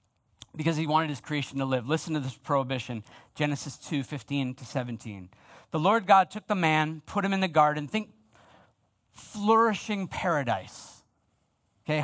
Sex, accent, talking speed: male, American, 155 wpm